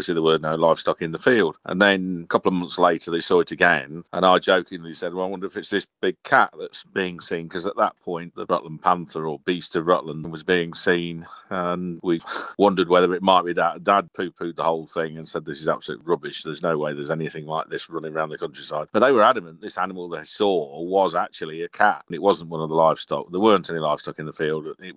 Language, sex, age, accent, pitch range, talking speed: English, male, 40-59, British, 80-95 Hz, 250 wpm